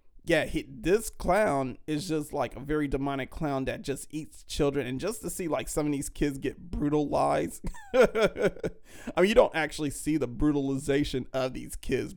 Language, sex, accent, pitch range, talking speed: English, male, American, 110-145 Hz, 180 wpm